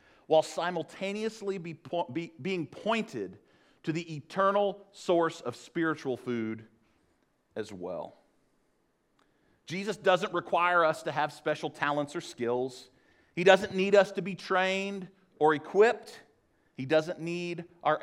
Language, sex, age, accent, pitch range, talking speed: English, male, 40-59, American, 130-185 Hz, 120 wpm